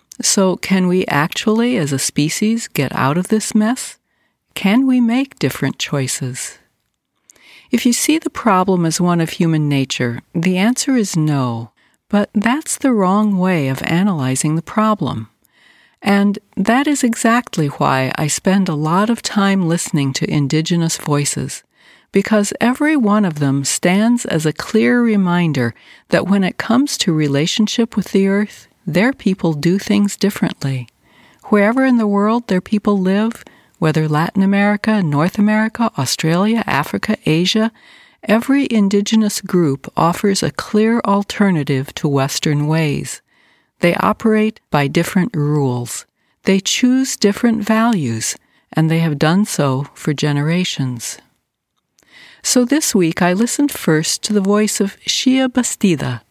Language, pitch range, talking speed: English, 155-220 Hz, 140 wpm